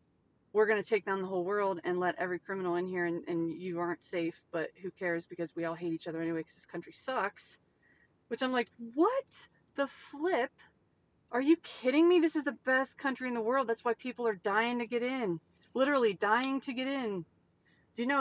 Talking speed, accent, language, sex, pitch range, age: 220 wpm, American, English, female, 180-240 Hz, 30-49